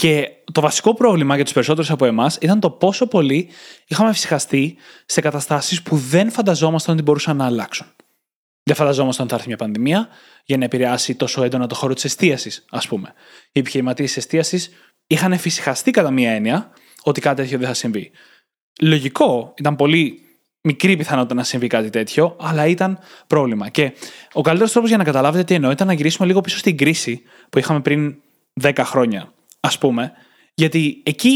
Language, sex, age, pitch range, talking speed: Greek, male, 20-39, 135-185 Hz, 180 wpm